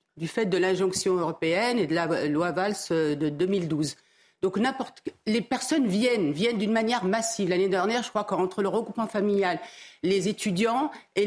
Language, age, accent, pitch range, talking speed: French, 50-69, French, 200-270 Hz, 170 wpm